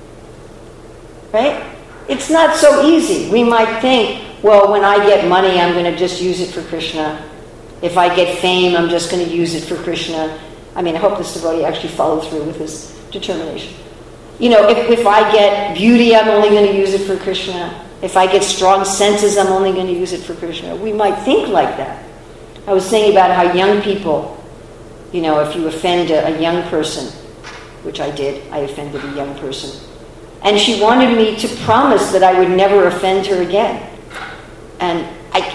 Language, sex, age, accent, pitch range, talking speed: English, female, 50-69, American, 165-210 Hz, 200 wpm